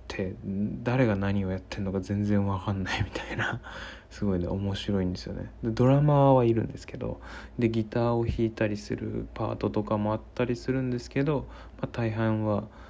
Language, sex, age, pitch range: Japanese, male, 20-39, 90-110 Hz